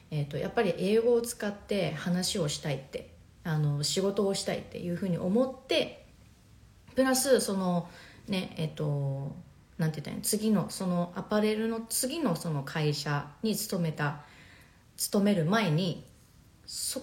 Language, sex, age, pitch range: Japanese, female, 30-49, 160-245 Hz